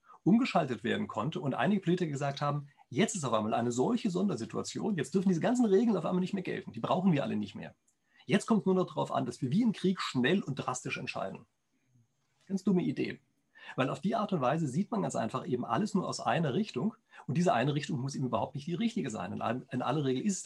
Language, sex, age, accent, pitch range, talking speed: German, male, 40-59, German, 125-185 Hz, 240 wpm